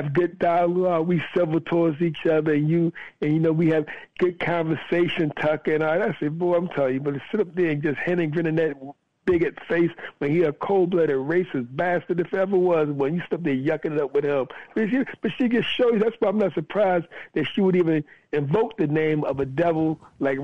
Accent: American